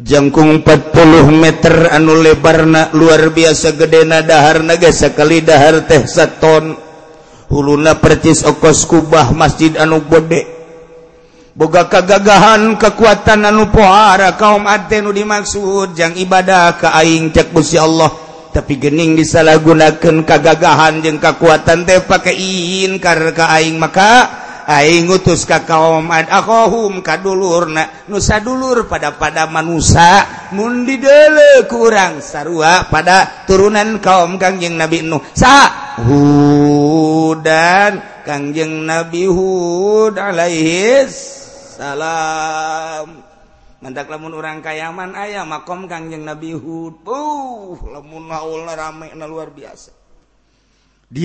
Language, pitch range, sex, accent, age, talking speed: Indonesian, 155-185 Hz, male, native, 50-69, 110 wpm